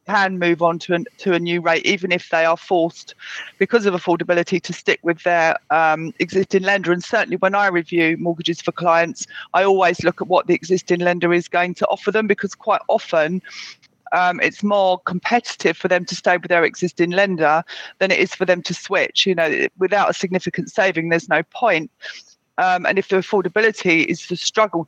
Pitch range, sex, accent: 170-195 Hz, female, British